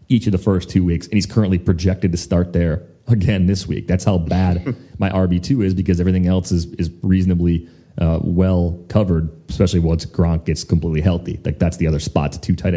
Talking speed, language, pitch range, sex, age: 205 wpm, English, 90-110 Hz, male, 30-49